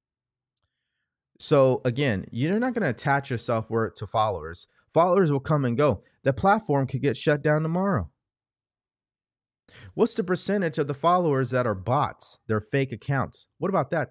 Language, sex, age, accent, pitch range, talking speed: English, male, 30-49, American, 110-145 Hz, 160 wpm